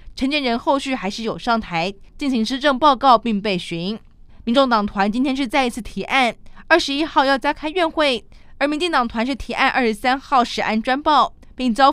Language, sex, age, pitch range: Chinese, female, 20-39, 225-295 Hz